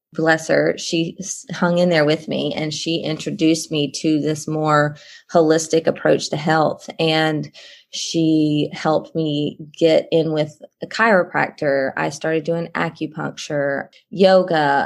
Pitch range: 155-175 Hz